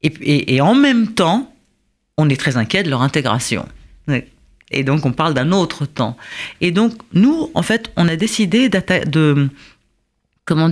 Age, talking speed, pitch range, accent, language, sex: 40-59, 170 wpm, 145-200 Hz, French, French, female